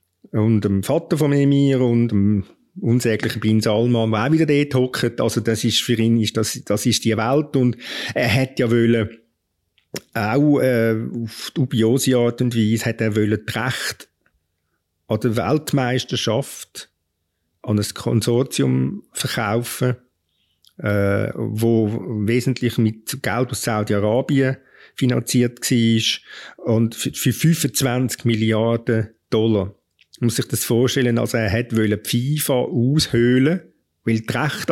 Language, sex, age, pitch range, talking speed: German, male, 50-69, 110-125 Hz, 130 wpm